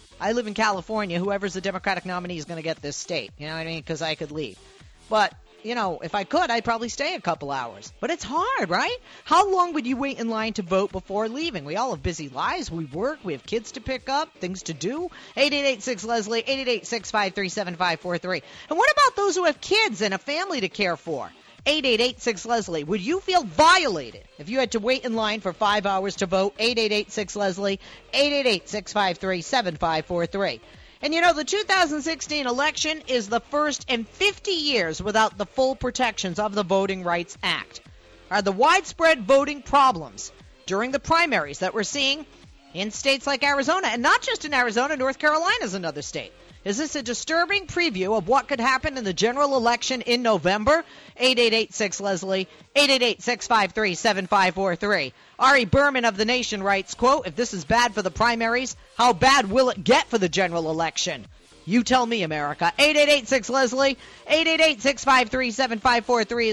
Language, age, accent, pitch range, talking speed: English, 40-59, American, 195-275 Hz, 195 wpm